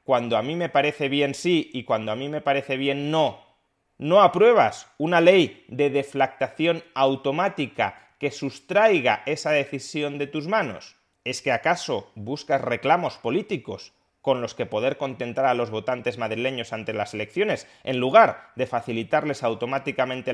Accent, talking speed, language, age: Spanish, 155 wpm, Spanish, 30-49